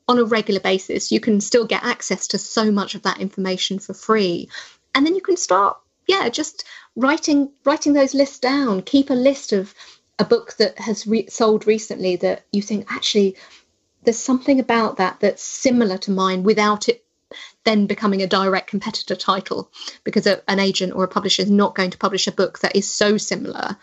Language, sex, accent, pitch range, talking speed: English, female, British, 195-240 Hz, 195 wpm